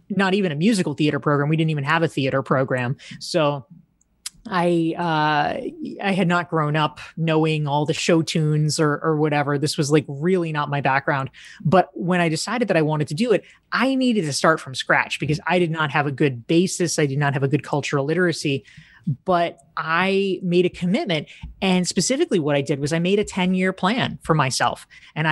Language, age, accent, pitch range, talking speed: English, 20-39, American, 155-195 Hz, 210 wpm